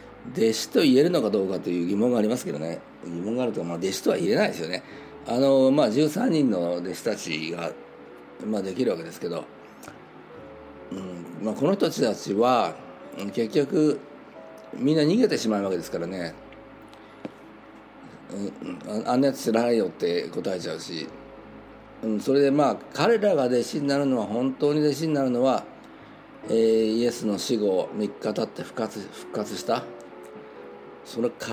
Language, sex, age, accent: Japanese, male, 50-69, native